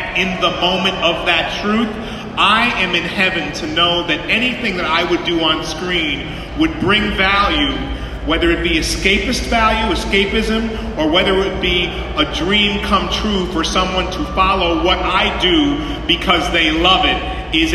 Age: 40-59